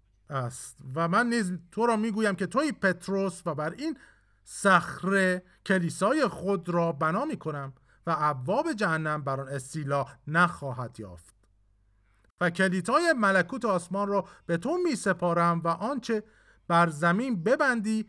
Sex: male